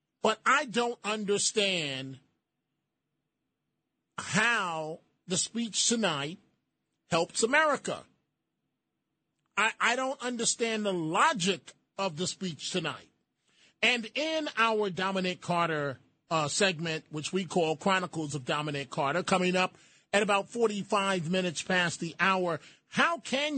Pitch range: 155-200 Hz